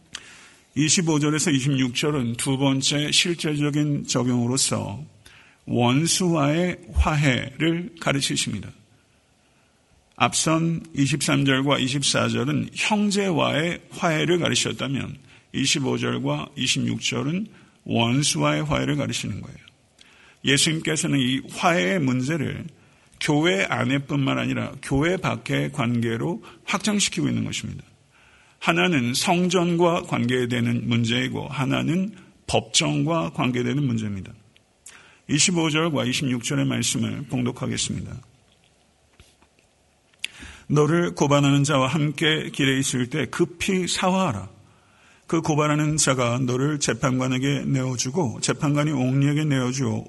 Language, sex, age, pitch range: Korean, male, 50-69, 125-155 Hz